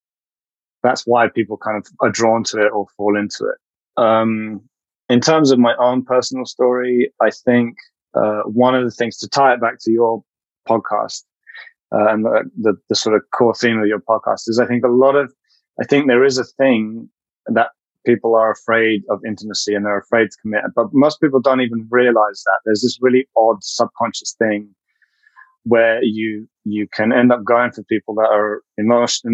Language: English